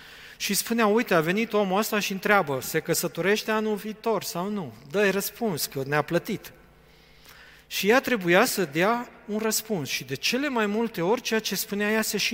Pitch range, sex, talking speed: 155-215 Hz, male, 190 wpm